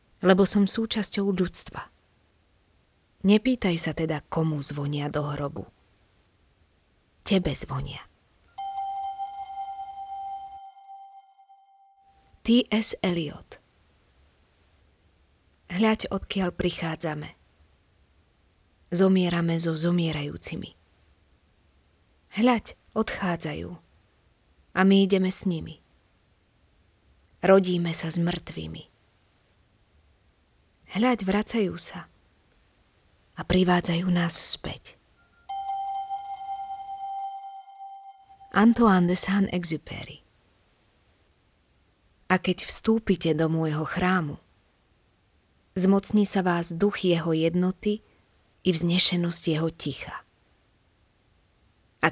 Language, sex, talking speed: Slovak, female, 70 wpm